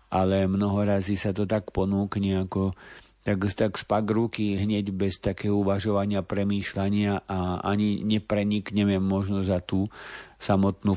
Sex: male